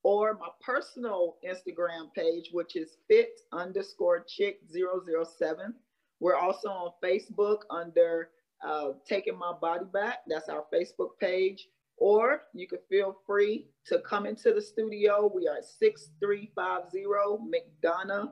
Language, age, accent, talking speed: English, 40-59, American, 120 wpm